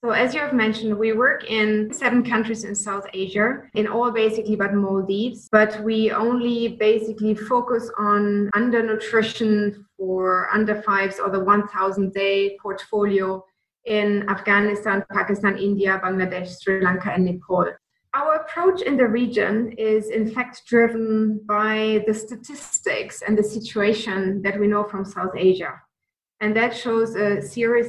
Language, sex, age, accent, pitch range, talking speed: English, female, 20-39, German, 195-220 Hz, 145 wpm